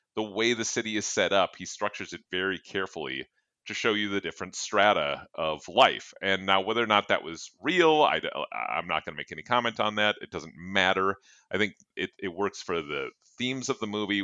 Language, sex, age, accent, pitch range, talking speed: English, male, 30-49, American, 85-110 Hz, 220 wpm